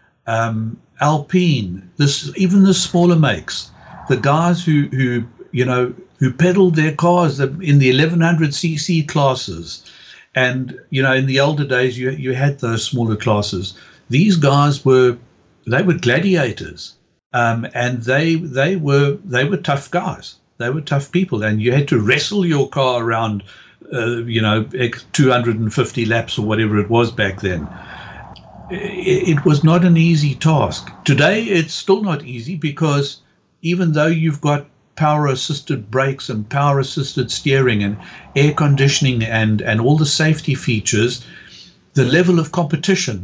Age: 60-79